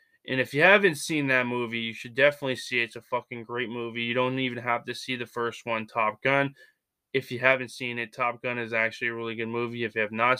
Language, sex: English, male